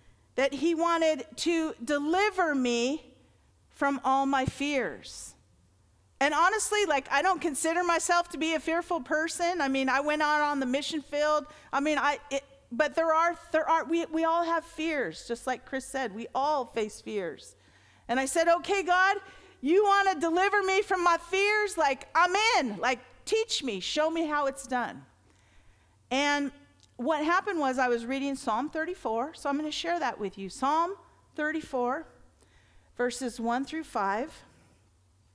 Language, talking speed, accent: English, 170 wpm, American